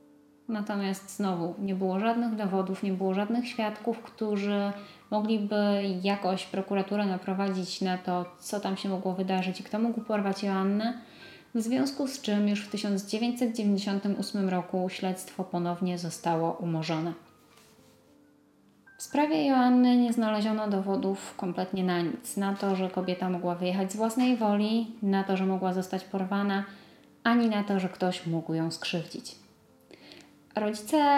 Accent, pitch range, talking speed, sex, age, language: native, 185-210 Hz, 140 wpm, female, 20-39, Polish